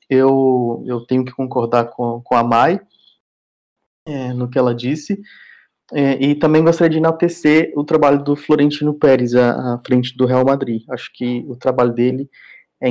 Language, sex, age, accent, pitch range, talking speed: Portuguese, male, 20-39, Brazilian, 120-155 Hz, 170 wpm